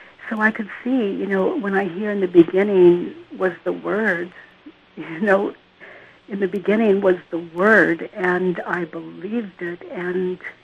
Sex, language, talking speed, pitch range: female, English, 160 wpm, 175-195 Hz